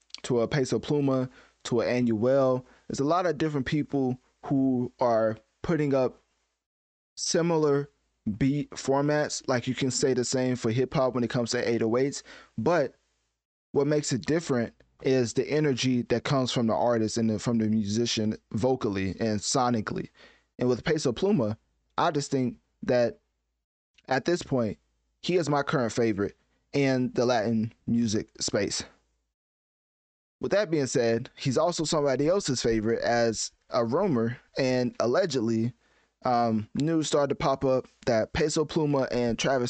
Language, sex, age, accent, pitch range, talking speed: English, male, 20-39, American, 110-140 Hz, 150 wpm